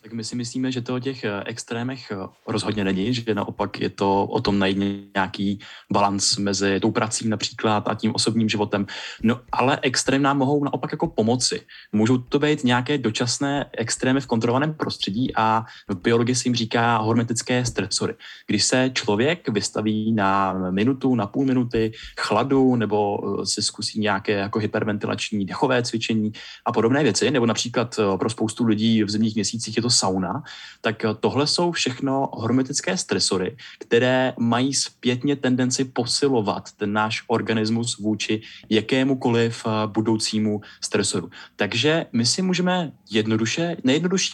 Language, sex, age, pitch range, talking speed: Czech, male, 20-39, 105-130 Hz, 145 wpm